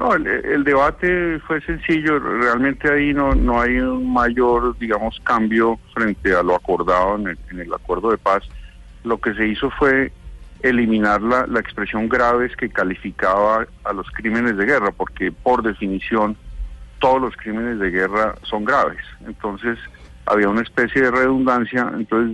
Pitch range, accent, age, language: 95-120 Hz, Colombian, 40-59, Spanish